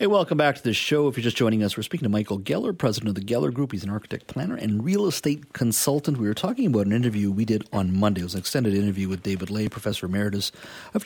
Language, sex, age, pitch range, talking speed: English, male, 40-59, 100-135 Hz, 270 wpm